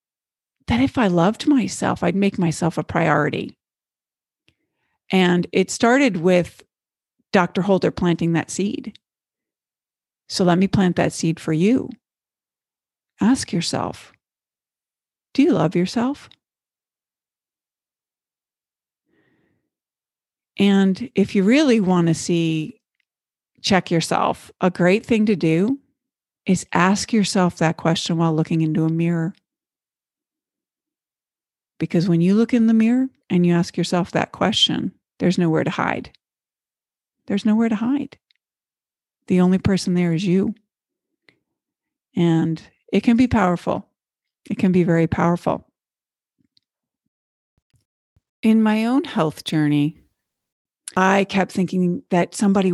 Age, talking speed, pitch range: 50-69, 120 wpm, 170-225 Hz